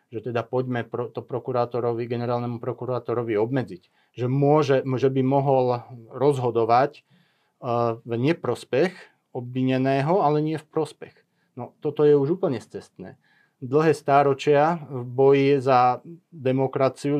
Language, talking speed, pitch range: Slovak, 120 wpm, 125-145 Hz